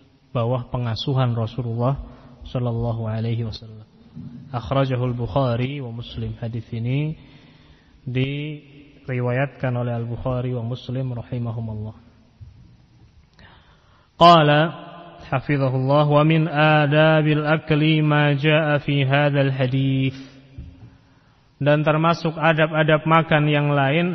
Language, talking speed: Indonesian, 80 wpm